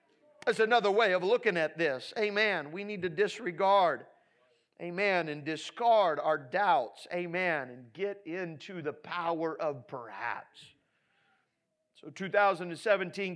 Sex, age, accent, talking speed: male, 40-59, American, 120 wpm